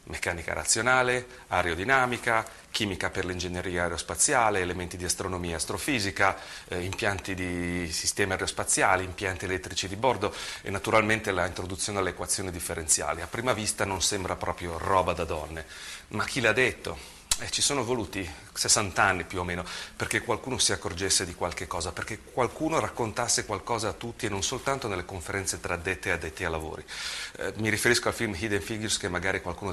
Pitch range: 90-105 Hz